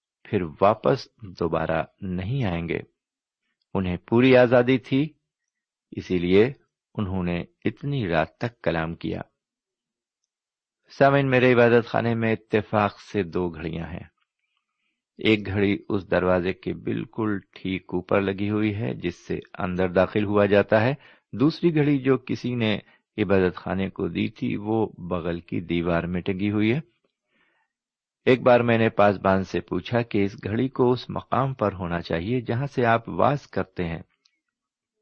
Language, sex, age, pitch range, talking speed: Urdu, male, 50-69, 90-135 Hz, 150 wpm